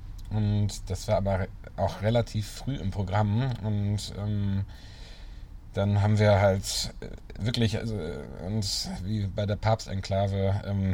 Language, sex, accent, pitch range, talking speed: German, male, German, 100-110 Hz, 130 wpm